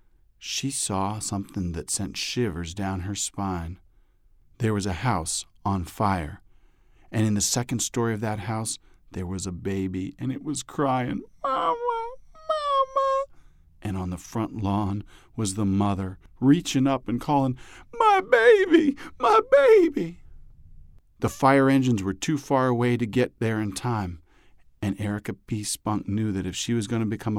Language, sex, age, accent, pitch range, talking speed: English, male, 40-59, American, 95-125 Hz, 160 wpm